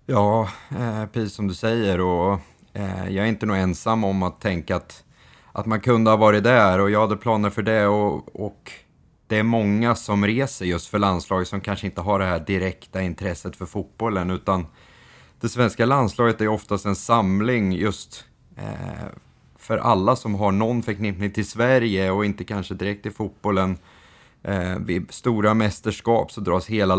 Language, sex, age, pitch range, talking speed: Swedish, male, 30-49, 95-110 Hz, 170 wpm